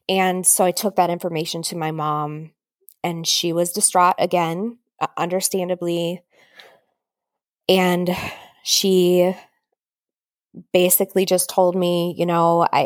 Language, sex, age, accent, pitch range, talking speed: English, female, 20-39, American, 165-185 Hz, 105 wpm